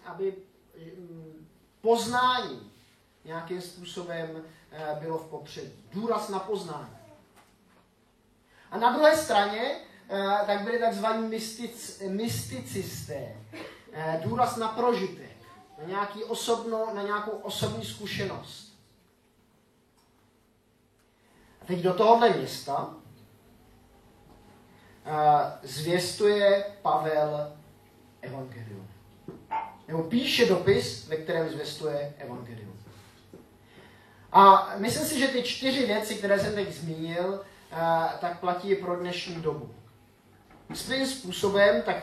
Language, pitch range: Czech, 155-205 Hz